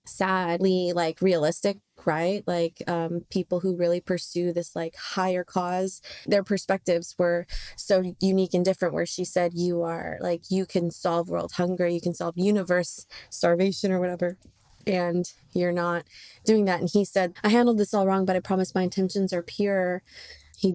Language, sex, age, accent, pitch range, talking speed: English, female, 20-39, American, 170-185 Hz, 175 wpm